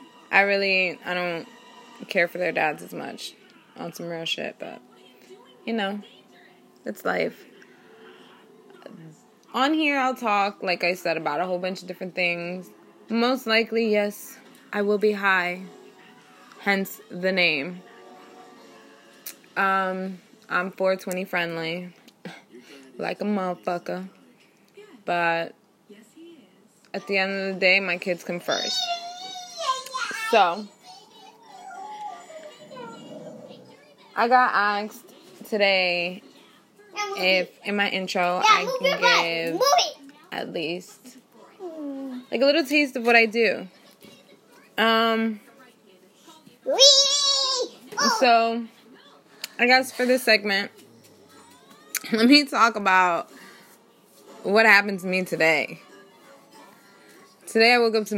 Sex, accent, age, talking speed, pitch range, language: female, American, 20-39, 105 wpm, 185-255 Hz, English